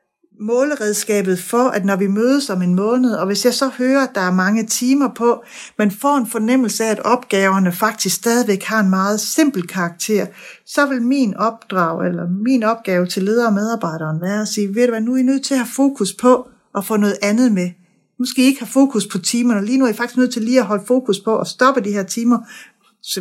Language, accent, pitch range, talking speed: Danish, native, 185-240 Hz, 235 wpm